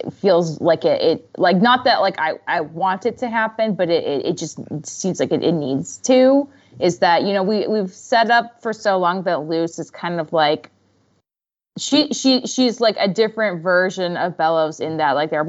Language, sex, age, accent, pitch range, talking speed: English, female, 20-39, American, 165-215 Hz, 215 wpm